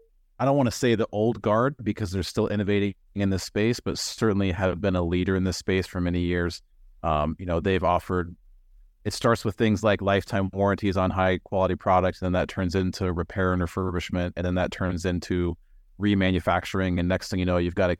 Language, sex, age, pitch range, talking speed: English, male, 30-49, 85-100 Hz, 215 wpm